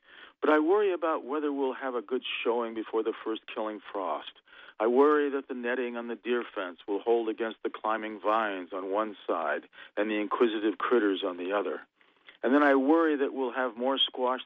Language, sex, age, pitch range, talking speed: English, male, 40-59, 110-150 Hz, 205 wpm